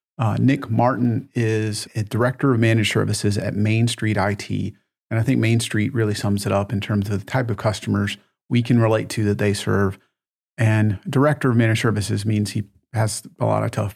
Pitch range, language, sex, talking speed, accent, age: 105-125 Hz, English, male, 205 wpm, American, 40-59